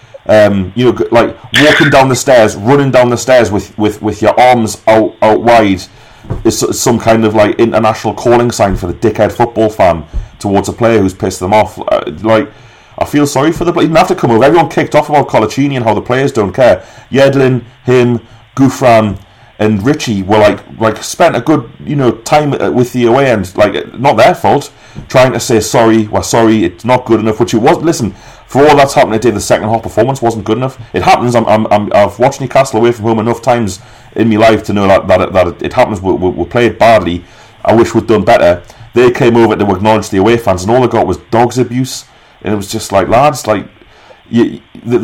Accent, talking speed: British, 225 wpm